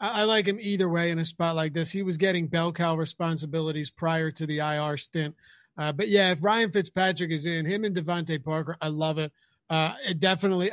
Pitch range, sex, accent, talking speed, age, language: 165-200 Hz, male, American, 220 wpm, 30-49, English